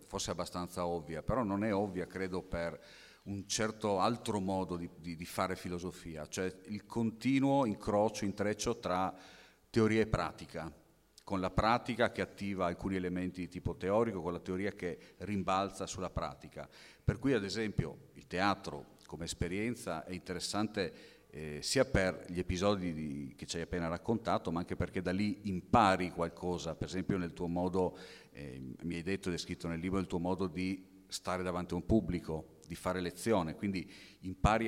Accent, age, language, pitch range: native, 40-59, Italian, 85-105 Hz